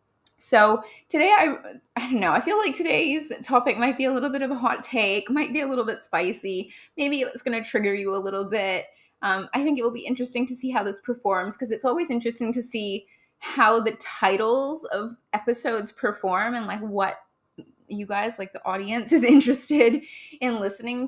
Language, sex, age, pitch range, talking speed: English, female, 20-39, 215-285 Hz, 200 wpm